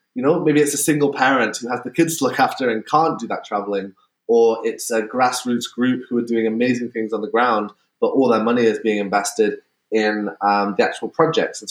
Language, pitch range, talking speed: English, 105-145 Hz, 230 wpm